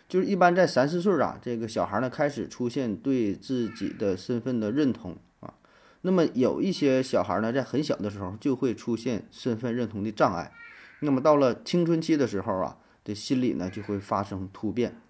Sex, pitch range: male, 105-135 Hz